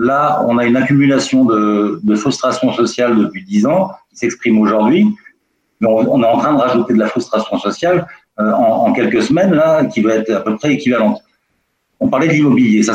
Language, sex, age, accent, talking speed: French, male, 50-69, French, 200 wpm